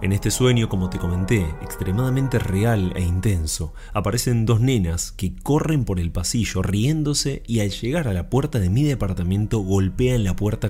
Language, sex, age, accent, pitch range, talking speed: Spanish, male, 20-39, Argentinian, 90-115 Hz, 175 wpm